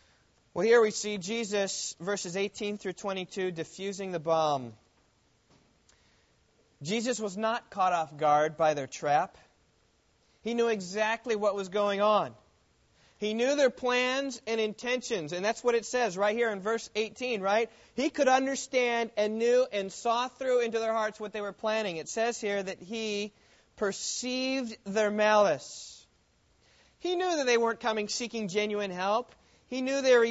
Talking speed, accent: 160 wpm, American